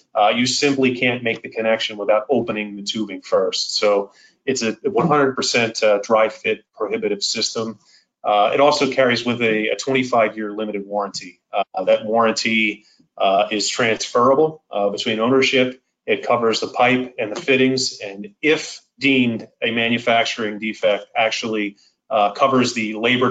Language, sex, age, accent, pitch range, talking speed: English, male, 30-49, American, 110-130 Hz, 150 wpm